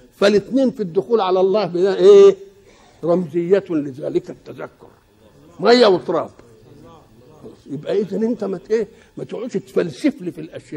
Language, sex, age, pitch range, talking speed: Arabic, male, 60-79, 170-220 Hz, 125 wpm